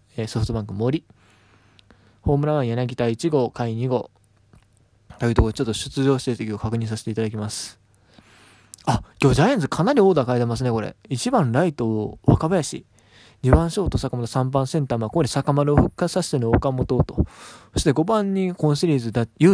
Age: 20-39